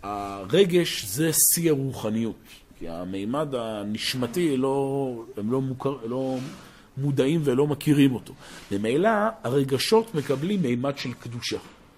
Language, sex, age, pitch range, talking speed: Hebrew, male, 50-69, 125-170 Hz, 110 wpm